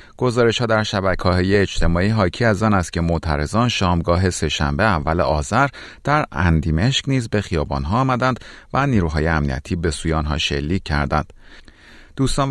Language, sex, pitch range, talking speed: Persian, male, 80-110 Hz, 155 wpm